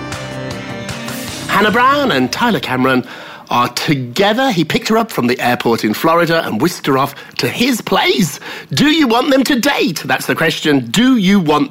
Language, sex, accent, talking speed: English, male, British, 180 wpm